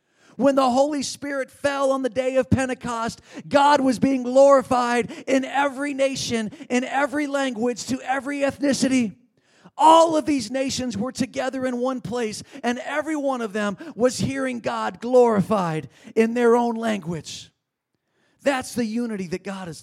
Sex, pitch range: male, 165-245 Hz